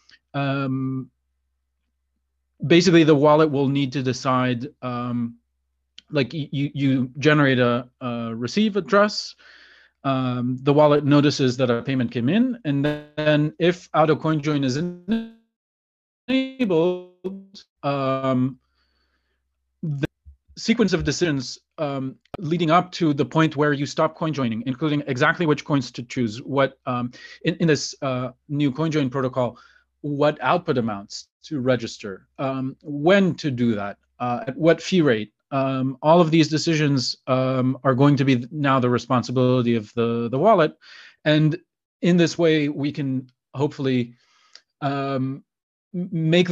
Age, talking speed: 30-49, 140 wpm